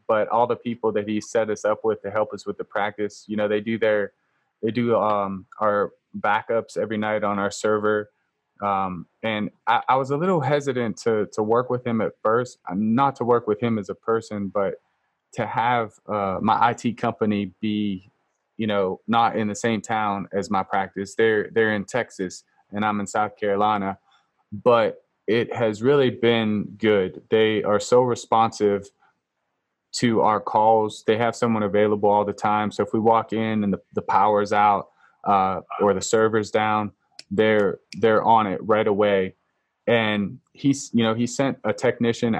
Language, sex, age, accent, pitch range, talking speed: English, male, 20-39, American, 100-115 Hz, 185 wpm